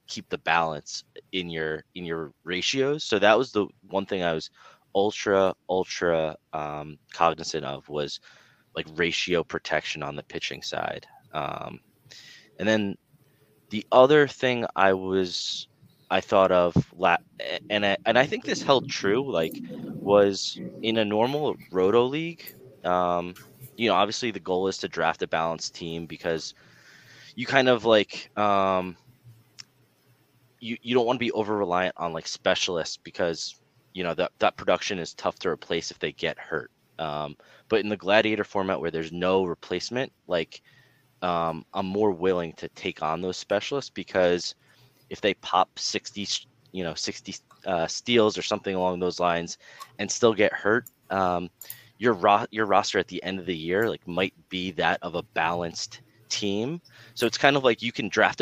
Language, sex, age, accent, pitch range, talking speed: English, male, 20-39, American, 90-115 Hz, 170 wpm